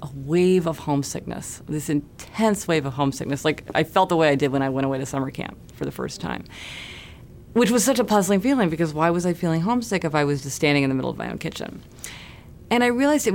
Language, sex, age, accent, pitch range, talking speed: English, female, 30-49, American, 145-185 Hz, 245 wpm